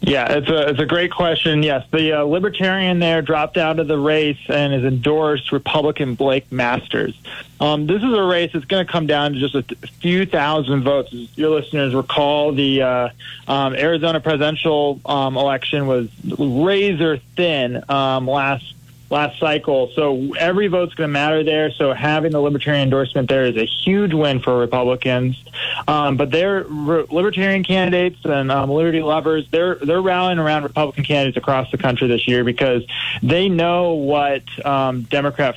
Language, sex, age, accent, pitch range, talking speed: English, male, 20-39, American, 130-155 Hz, 170 wpm